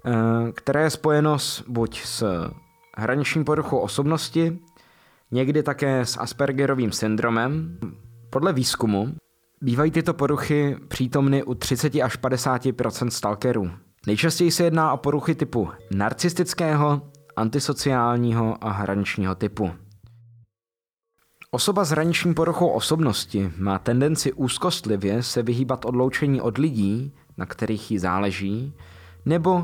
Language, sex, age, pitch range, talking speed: Czech, male, 20-39, 110-150 Hz, 110 wpm